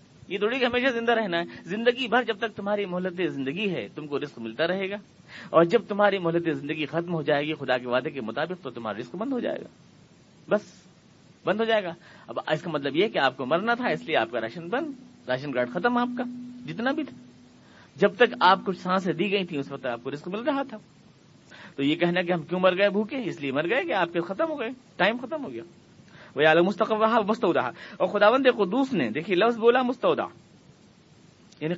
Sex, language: male, Urdu